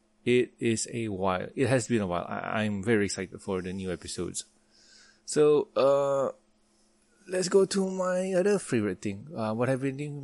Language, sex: English, male